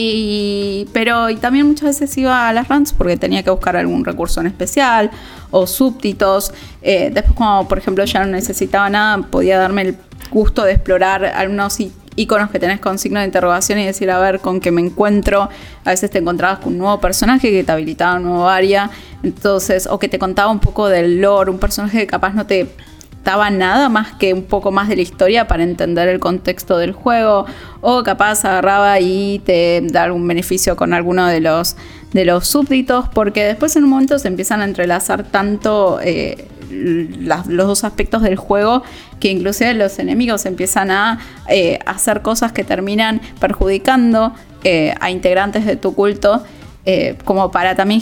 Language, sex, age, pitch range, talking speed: Spanish, female, 20-39, 185-215 Hz, 190 wpm